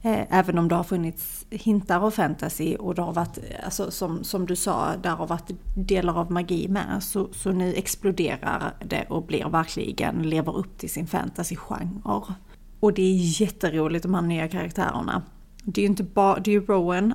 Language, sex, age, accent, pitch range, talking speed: Swedish, female, 30-49, native, 175-205 Hz, 190 wpm